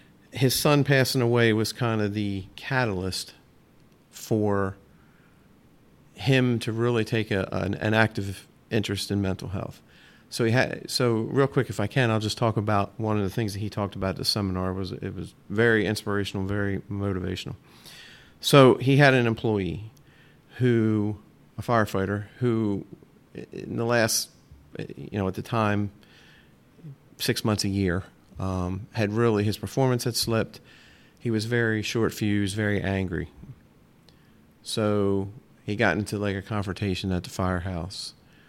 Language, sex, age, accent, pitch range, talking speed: English, male, 40-59, American, 100-120 Hz, 155 wpm